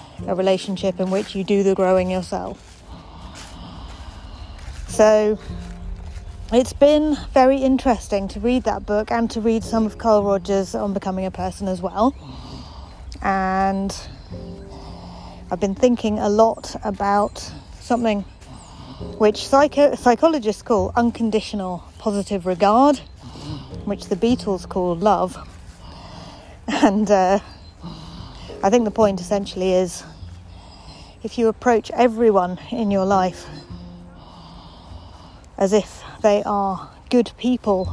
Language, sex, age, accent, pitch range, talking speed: English, female, 30-49, British, 175-215 Hz, 110 wpm